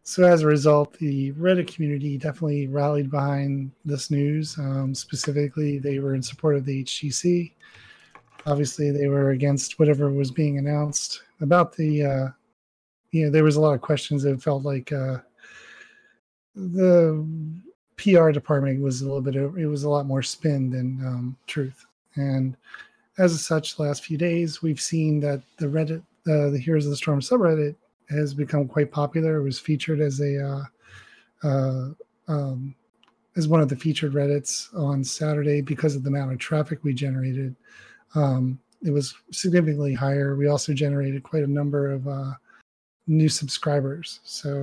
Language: English